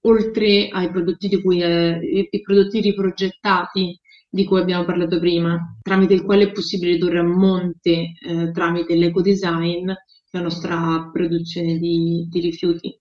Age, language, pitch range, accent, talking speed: 20-39, Italian, 175-205 Hz, native, 150 wpm